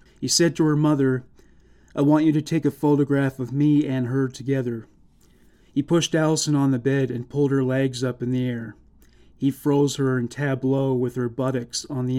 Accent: American